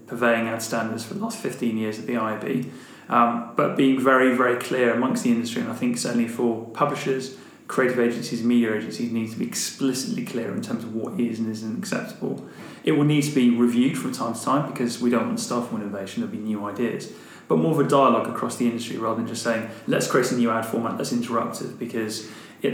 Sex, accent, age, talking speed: male, British, 20-39, 235 wpm